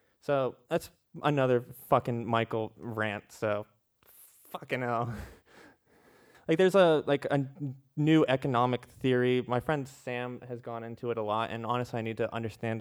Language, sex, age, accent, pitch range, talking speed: English, male, 20-39, American, 115-135 Hz, 150 wpm